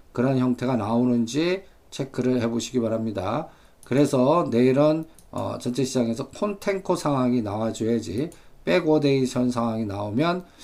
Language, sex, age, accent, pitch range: Korean, male, 50-69, native, 125-165 Hz